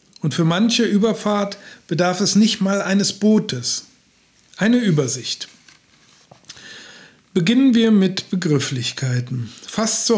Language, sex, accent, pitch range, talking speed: German, male, German, 155-195 Hz, 105 wpm